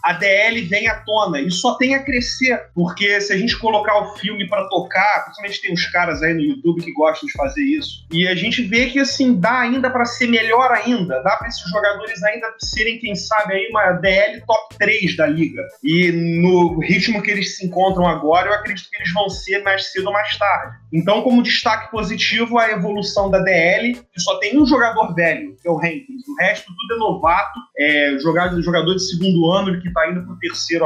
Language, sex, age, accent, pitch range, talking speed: Portuguese, male, 20-39, Brazilian, 170-220 Hz, 215 wpm